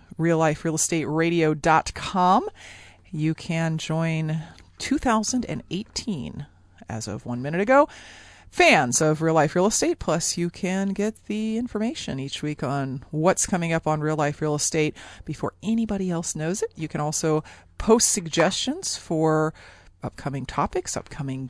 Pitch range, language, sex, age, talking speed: 140-185 Hz, English, female, 30-49, 140 wpm